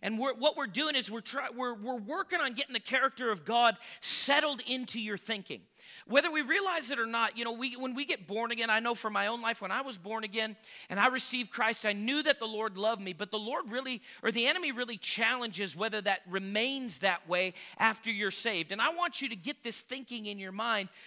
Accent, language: American, English